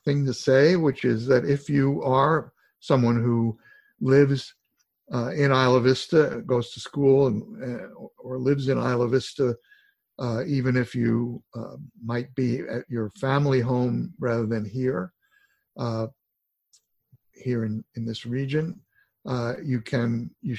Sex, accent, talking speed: male, American, 145 wpm